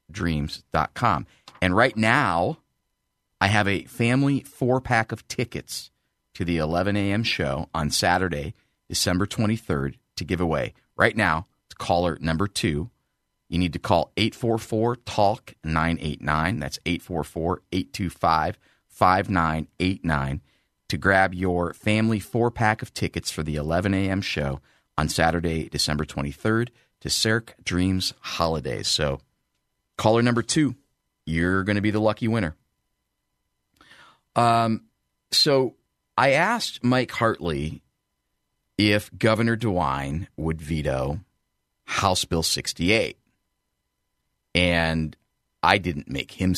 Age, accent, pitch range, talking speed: 40-59, American, 80-110 Hz, 120 wpm